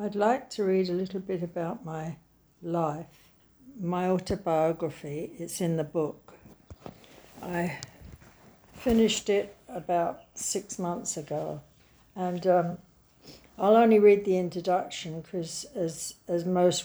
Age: 60-79